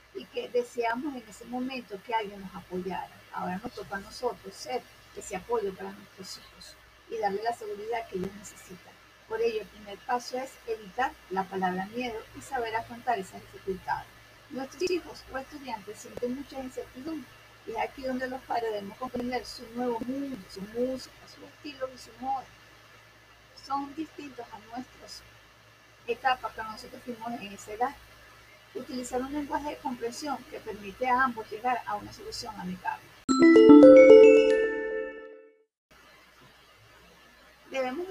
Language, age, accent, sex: Spanish, 40-59, American, female